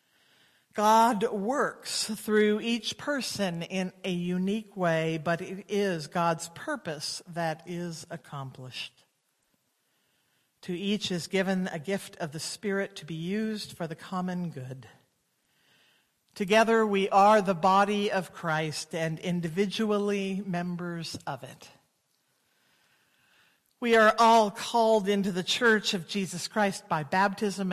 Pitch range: 165-210 Hz